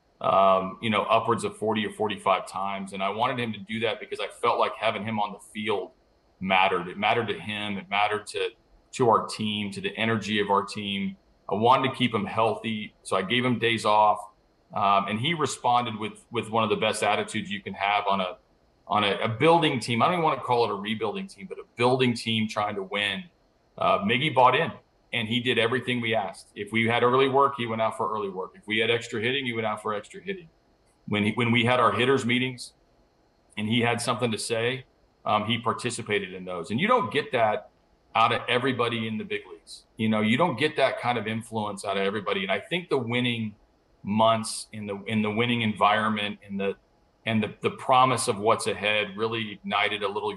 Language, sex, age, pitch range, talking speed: English, male, 40-59, 105-125 Hz, 230 wpm